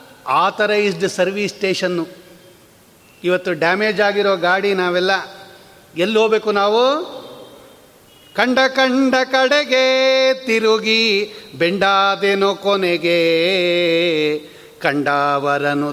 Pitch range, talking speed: 160-245 Hz, 70 wpm